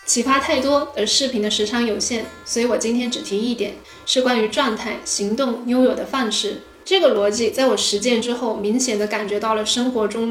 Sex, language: female, Chinese